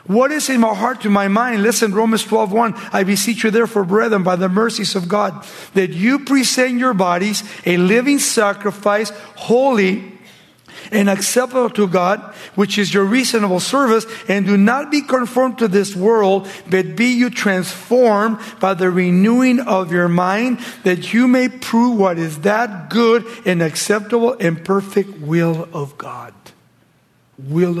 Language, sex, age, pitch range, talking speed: English, male, 50-69, 180-230 Hz, 160 wpm